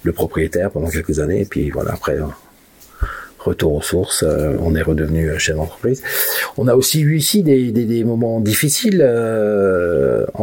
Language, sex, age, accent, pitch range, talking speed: French, male, 50-69, French, 80-105 Hz, 180 wpm